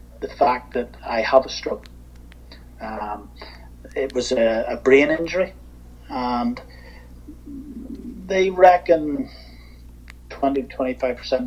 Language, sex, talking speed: English, male, 95 wpm